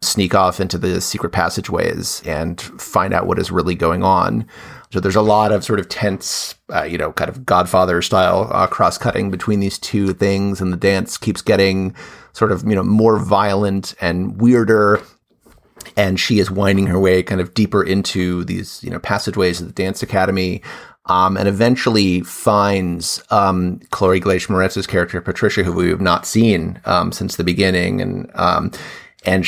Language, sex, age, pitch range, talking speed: English, male, 30-49, 95-110 Hz, 180 wpm